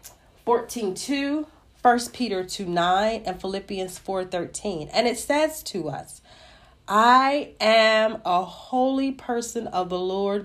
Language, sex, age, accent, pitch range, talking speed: English, female, 40-59, American, 180-260 Hz, 130 wpm